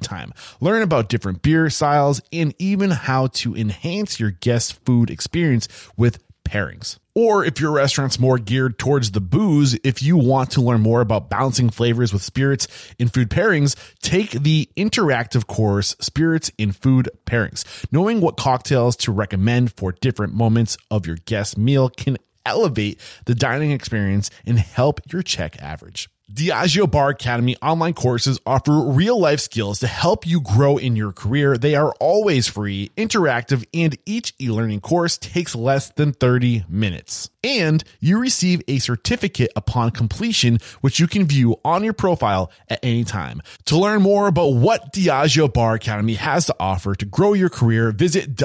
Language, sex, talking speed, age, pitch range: English, male, 165 wpm, 30-49, 110-155 Hz